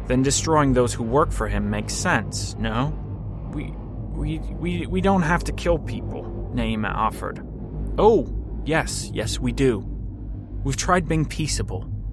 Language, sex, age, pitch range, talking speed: English, male, 30-49, 100-125 Hz, 150 wpm